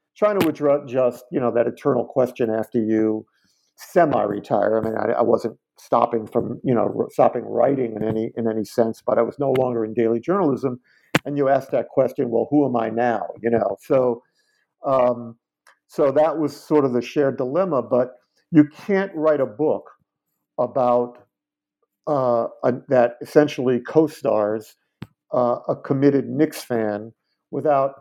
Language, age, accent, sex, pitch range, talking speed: English, 50-69, American, male, 120-145 Hz, 165 wpm